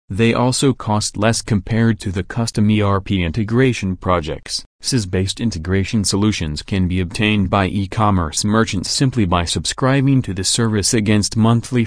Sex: male